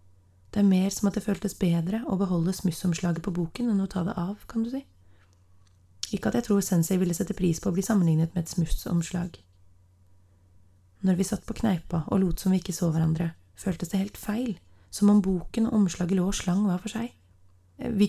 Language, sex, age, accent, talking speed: English, female, 30-49, Swedish, 210 wpm